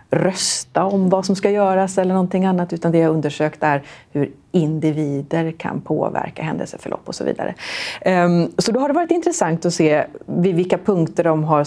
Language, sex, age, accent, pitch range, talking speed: Swedish, female, 30-49, native, 155-190 Hz, 180 wpm